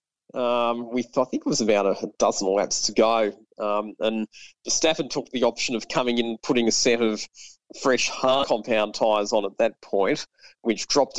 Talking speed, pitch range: 195 wpm, 110-135 Hz